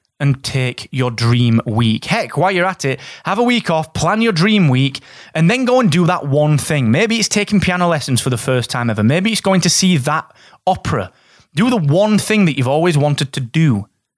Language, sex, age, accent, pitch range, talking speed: English, male, 20-39, British, 125-175 Hz, 225 wpm